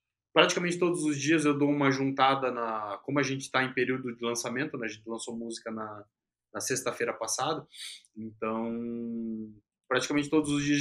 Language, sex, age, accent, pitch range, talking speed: Portuguese, male, 20-39, Brazilian, 115-140 Hz, 170 wpm